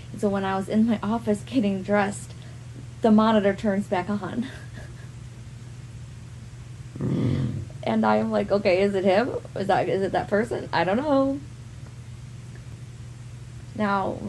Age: 20-39